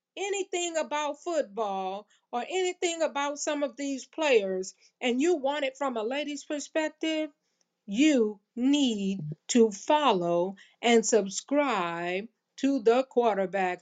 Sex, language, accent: female, English, American